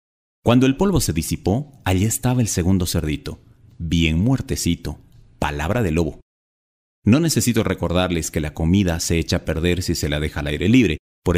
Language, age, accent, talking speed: Spanish, 40-59, Mexican, 175 wpm